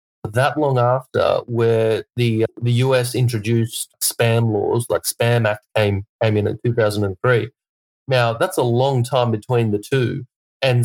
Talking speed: 150 wpm